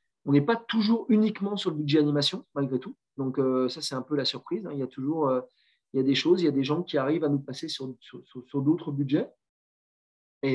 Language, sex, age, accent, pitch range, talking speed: French, male, 40-59, French, 130-155 Hz, 240 wpm